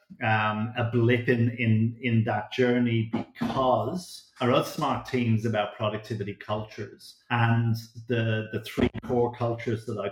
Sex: male